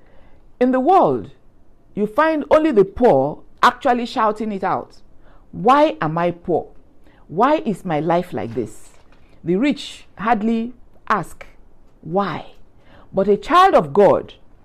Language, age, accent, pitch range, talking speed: English, 50-69, Nigerian, 140-205 Hz, 130 wpm